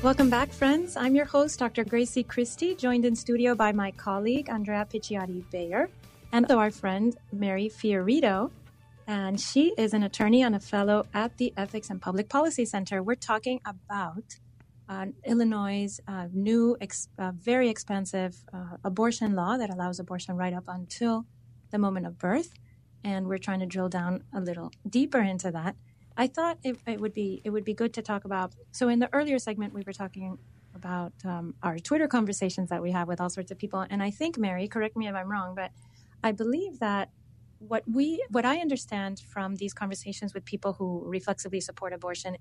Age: 30-49